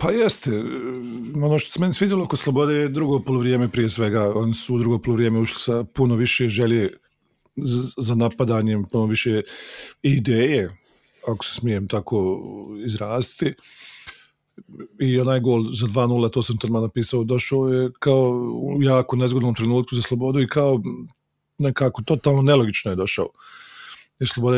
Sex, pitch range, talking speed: male, 110-130 Hz, 145 wpm